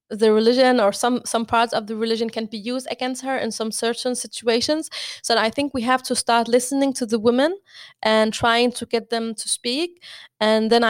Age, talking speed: 20-39, 210 wpm